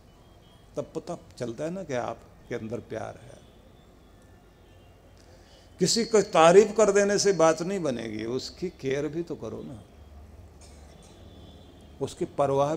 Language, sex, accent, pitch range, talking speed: Hindi, male, native, 100-160 Hz, 130 wpm